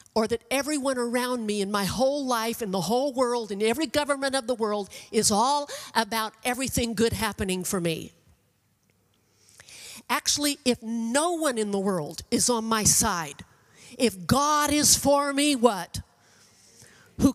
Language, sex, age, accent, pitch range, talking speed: English, female, 50-69, American, 185-245 Hz, 155 wpm